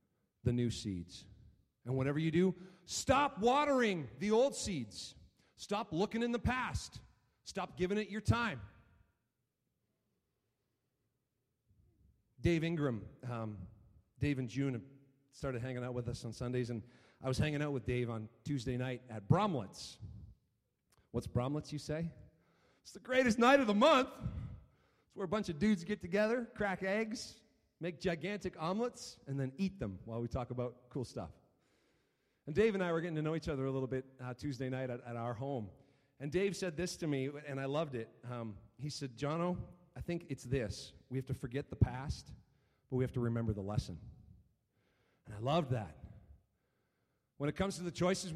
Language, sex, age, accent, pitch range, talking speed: English, male, 40-59, American, 120-185 Hz, 175 wpm